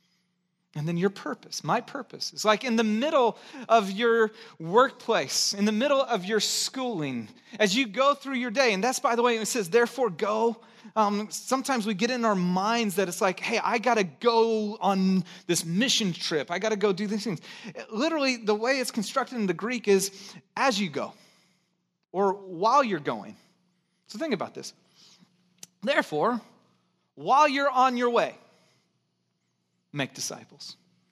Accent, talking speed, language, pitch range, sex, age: American, 170 wpm, English, 200-270 Hz, male, 30-49